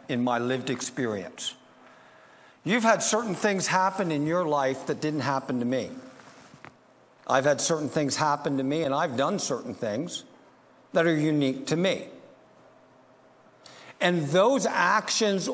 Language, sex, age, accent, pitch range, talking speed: English, male, 60-79, American, 150-205 Hz, 145 wpm